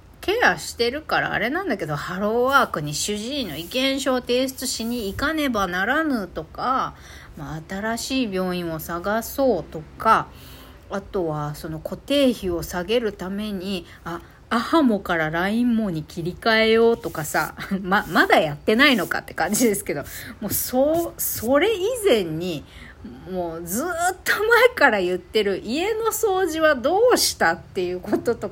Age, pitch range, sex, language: 40-59, 175-270 Hz, female, Japanese